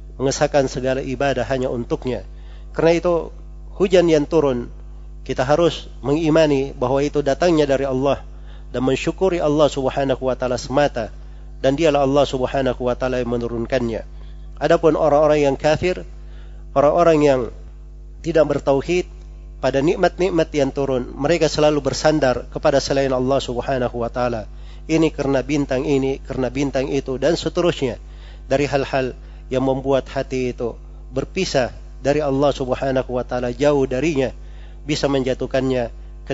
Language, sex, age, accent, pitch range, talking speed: Indonesian, male, 40-59, native, 120-145 Hz, 130 wpm